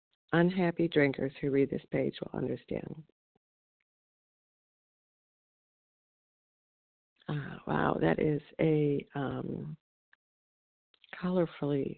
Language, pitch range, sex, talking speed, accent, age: English, 140-165 Hz, female, 80 wpm, American, 50-69